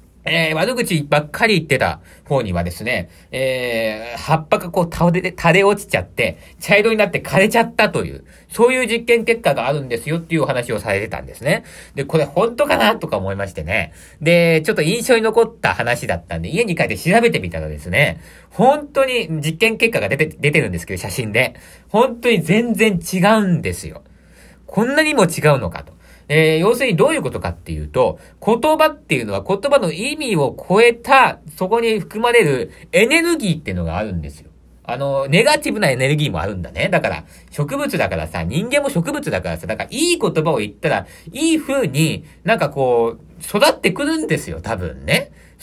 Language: Japanese